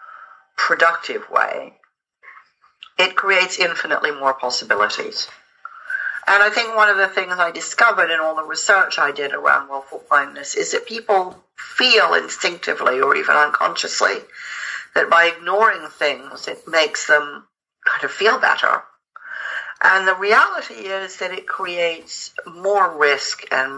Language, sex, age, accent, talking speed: English, female, 60-79, American, 135 wpm